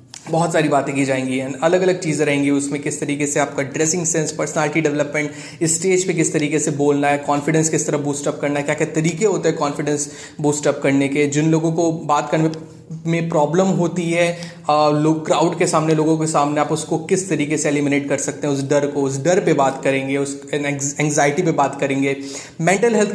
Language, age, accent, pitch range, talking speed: Hindi, 20-39, native, 140-170 Hz, 215 wpm